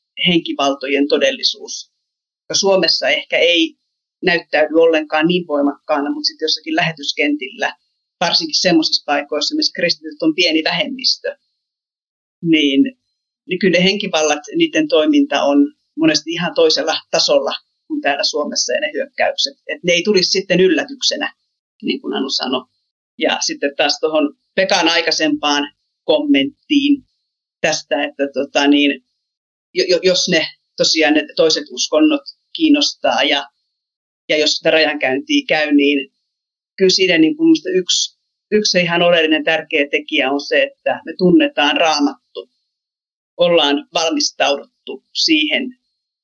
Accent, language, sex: native, Finnish, female